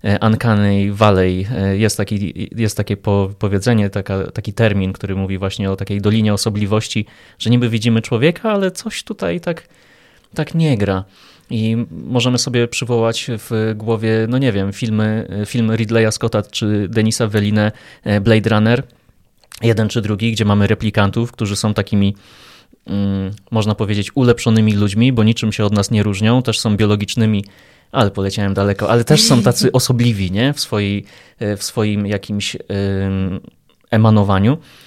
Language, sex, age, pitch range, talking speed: Polish, male, 20-39, 105-120 Hz, 140 wpm